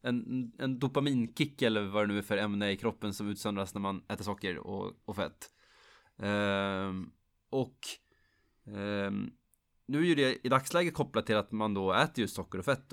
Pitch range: 110-140 Hz